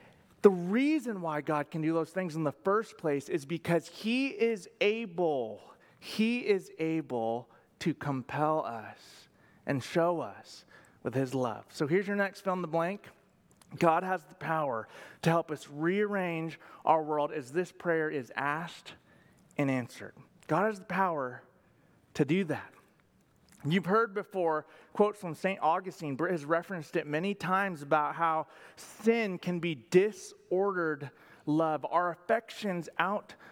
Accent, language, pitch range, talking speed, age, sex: American, English, 155-200 Hz, 150 wpm, 30-49, male